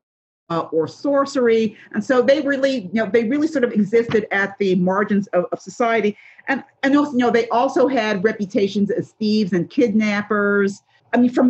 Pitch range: 175-250 Hz